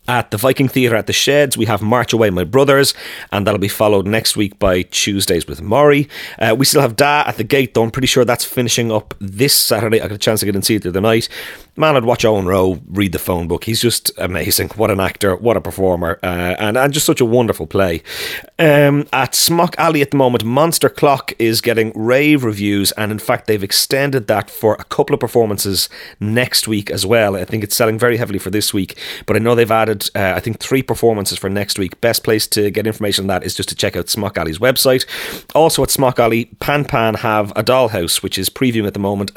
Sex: male